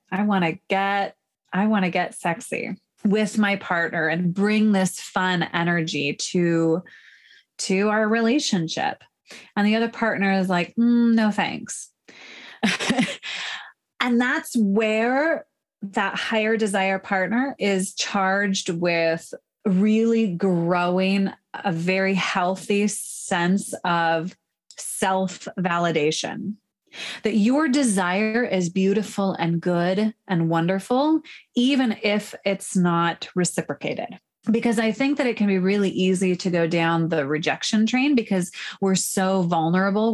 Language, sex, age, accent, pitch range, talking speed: English, female, 20-39, American, 175-220 Hz, 120 wpm